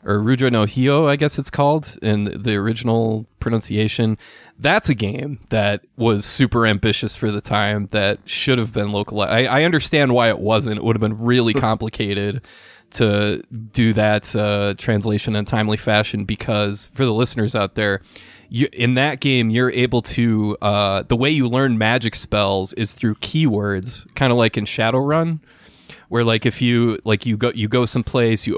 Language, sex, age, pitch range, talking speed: English, male, 20-39, 105-125 Hz, 185 wpm